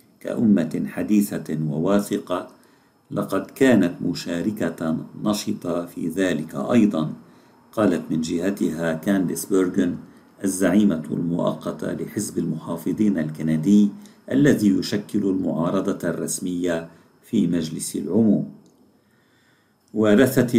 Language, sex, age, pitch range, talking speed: Arabic, male, 50-69, 80-105 Hz, 80 wpm